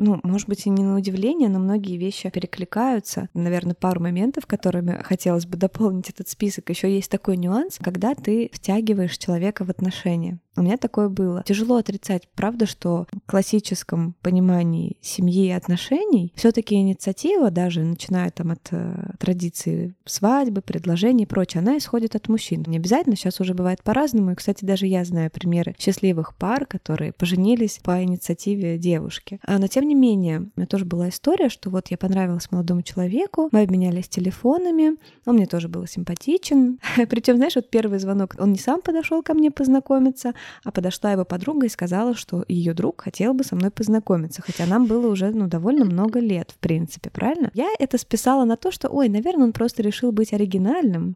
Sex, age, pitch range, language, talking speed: female, 20-39, 180-235 Hz, Russian, 180 wpm